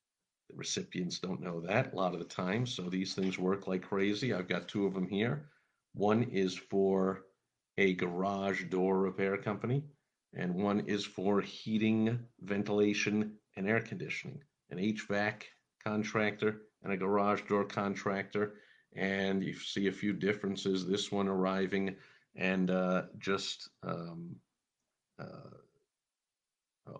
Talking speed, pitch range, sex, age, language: 135 wpm, 95-105 Hz, male, 50-69, English